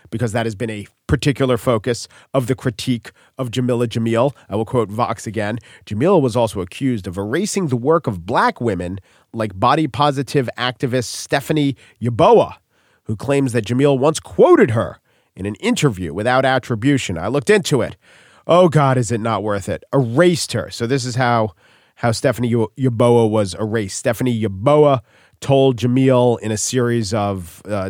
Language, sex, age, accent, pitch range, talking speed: English, male, 40-59, American, 110-140 Hz, 170 wpm